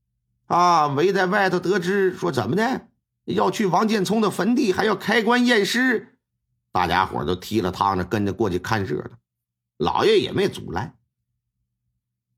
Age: 50-69